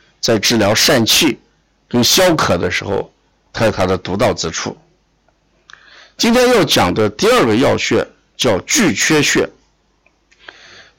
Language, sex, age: Chinese, male, 50-69